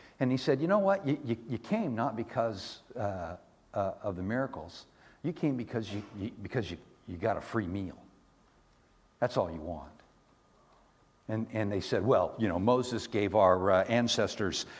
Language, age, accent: English, 60-79, American